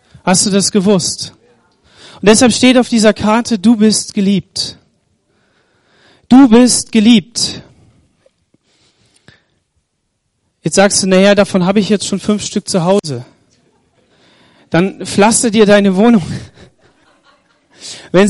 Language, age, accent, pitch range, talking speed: German, 40-59, German, 180-220 Hz, 115 wpm